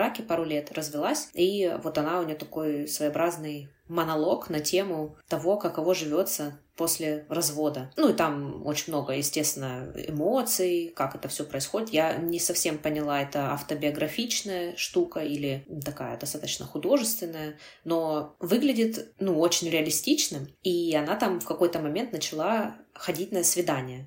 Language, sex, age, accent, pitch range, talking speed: Russian, female, 20-39, native, 145-180 Hz, 140 wpm